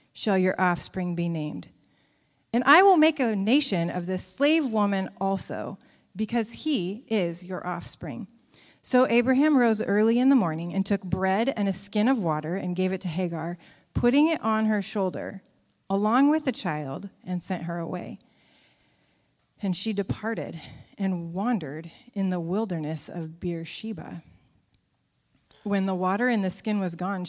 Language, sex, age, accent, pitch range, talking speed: English, female, 30-49, American, 175-220 Hz, 160 wpm